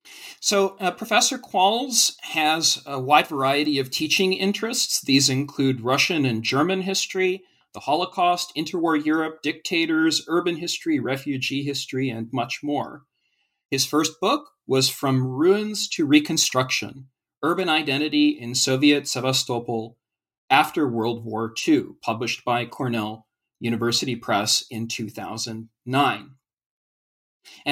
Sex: male